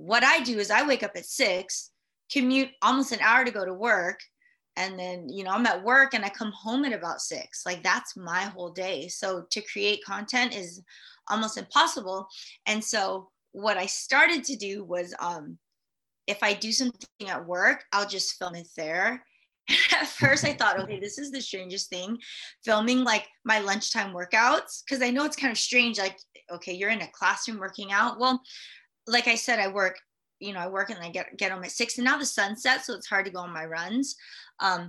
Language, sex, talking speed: English, female, 215 wpm